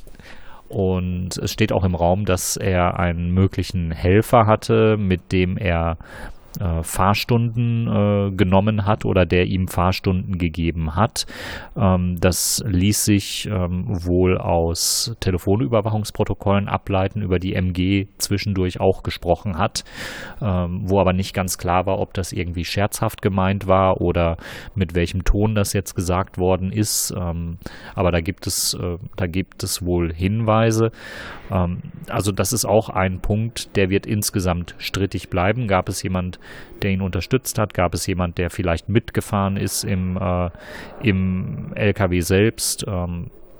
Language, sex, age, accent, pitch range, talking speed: German, male, 30-49, German, 90-105 Hz, 145 wpm